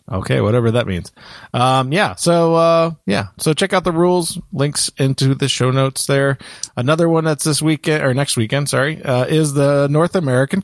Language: English